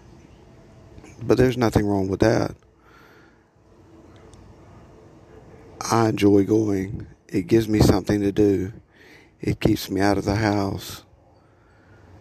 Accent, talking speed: American, 110 wpm